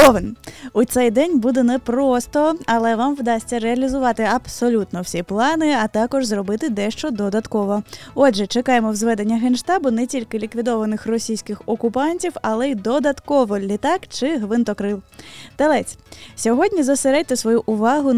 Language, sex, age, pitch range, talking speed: Ukrainian, female, 20-39, 220-275 Hz, 125 wpm